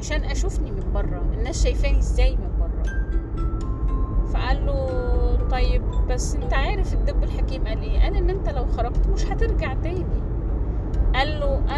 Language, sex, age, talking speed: Arabic, female, 20-39, 155 wpm